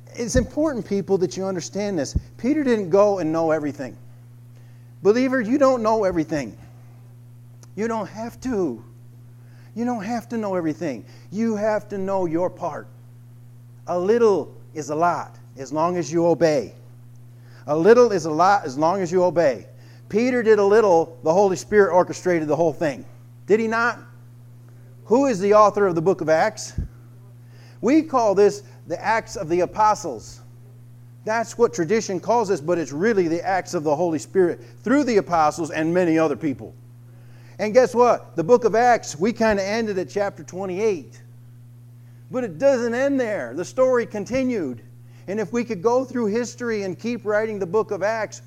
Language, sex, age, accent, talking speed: English, male, 50-69, American, 175 wpm